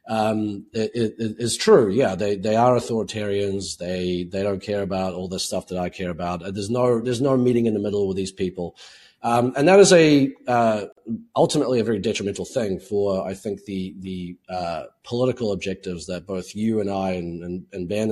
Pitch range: 95-125 Hz